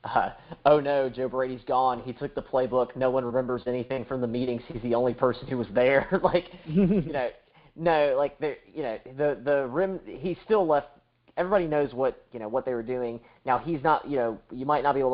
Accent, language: American, English